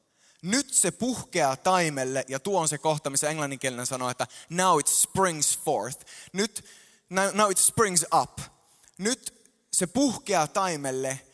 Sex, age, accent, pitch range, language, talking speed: male, 20-39, native, 135-185 Hz, Finnish, 130 wpm